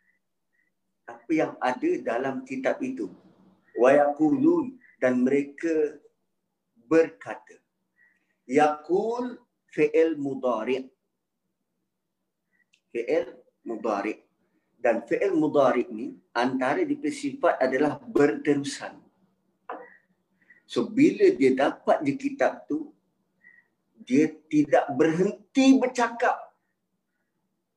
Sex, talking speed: male, 70 wpm